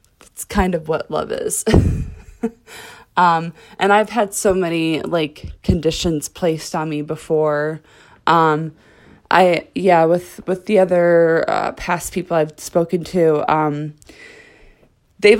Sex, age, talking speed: female, 20-39, 125 wpm